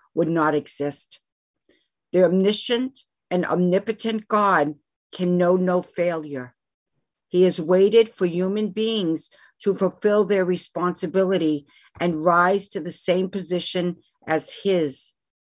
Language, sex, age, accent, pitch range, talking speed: English, female, 50-69, American, 170-210 Hz, 115 wpm